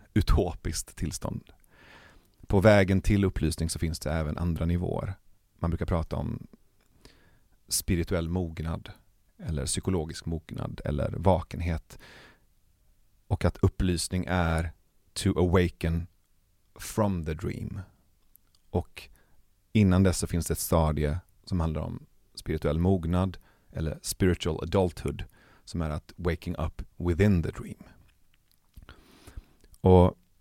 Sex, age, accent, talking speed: male, 30-49, native, 110 wpm